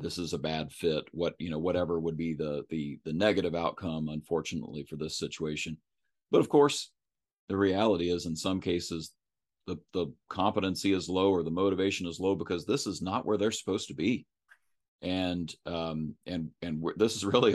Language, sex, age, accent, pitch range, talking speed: English, male, 40-59, American, 80-100 Hz, 190 wpm